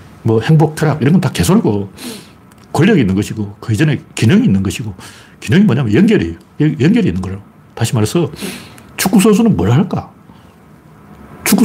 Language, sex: Korean, male